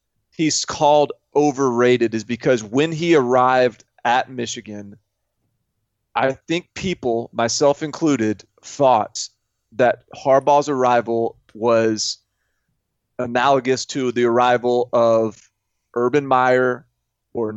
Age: 30-49